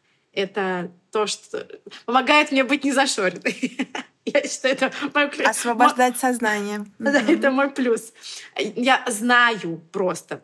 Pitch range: 205-260 Hz